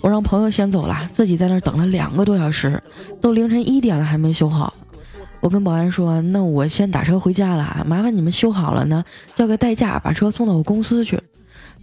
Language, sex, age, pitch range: Chinese, female, 20-39, 175-235 Hz